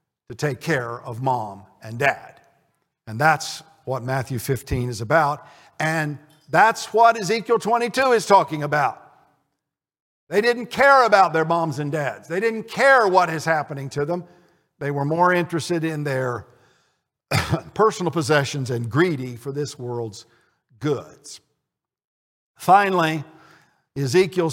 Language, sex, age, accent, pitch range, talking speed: English, male, 50-69, American, 140-185 Hz, 130 wpm